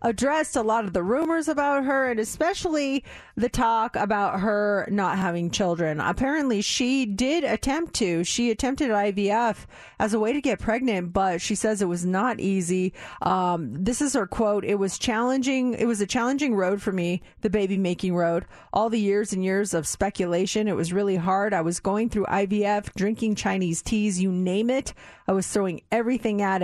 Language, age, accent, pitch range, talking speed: English, 40-59, American, 190-235 Hz, 190 wpm